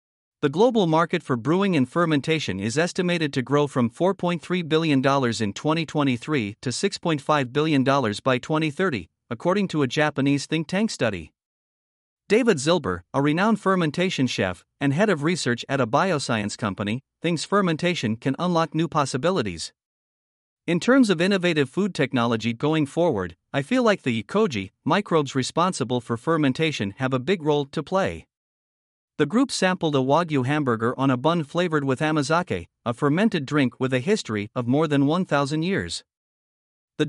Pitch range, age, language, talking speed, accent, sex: 125-175 Hz, 50-69, English, 155 wpm, American, male